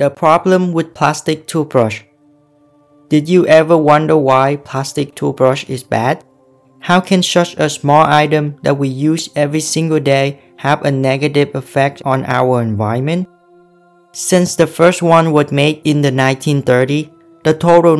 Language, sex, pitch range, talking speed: English, male, 140-165 Hz, 145 wpm